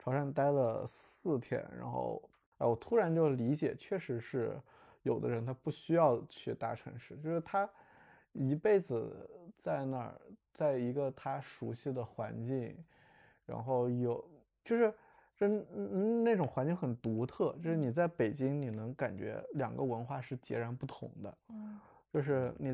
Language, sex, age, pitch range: Chinese, male, 20-39, 125-170 Hz